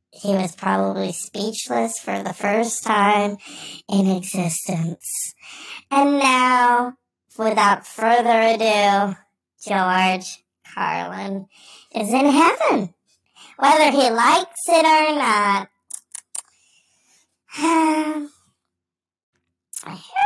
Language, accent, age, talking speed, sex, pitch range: English, American, 20-39, 80 wpm, male, 195-280 Hz